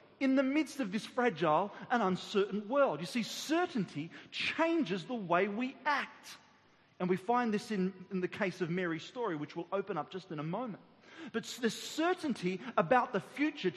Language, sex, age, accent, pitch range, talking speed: English, male, 40-59, Australian, 185-270 Hz, 185 wpm